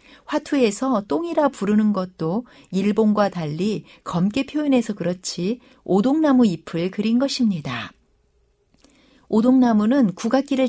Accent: native